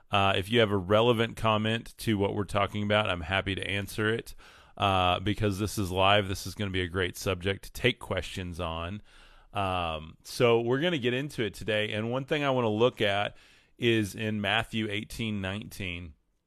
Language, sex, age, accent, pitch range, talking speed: English, male, 30-49, American, 95-115 Hz, 205 wpm